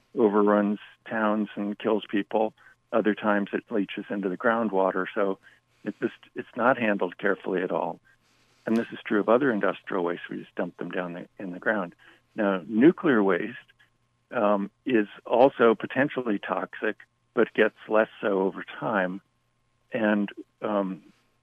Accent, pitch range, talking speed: American, 100-120 Hz, 145 wpm